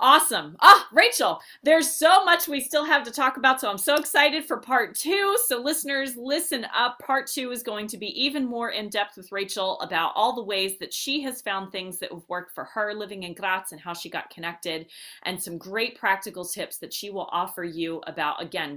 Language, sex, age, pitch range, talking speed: English, female, 30-49, 180-240 Hz, 225 wpm